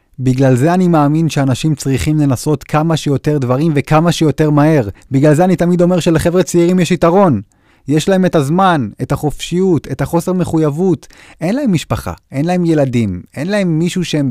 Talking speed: 170 wpm